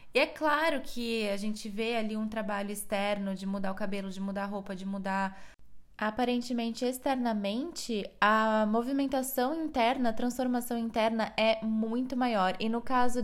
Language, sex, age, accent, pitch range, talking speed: Portuguese, female, 10-29, Brazilian, 215-265 Hz, 160 wpm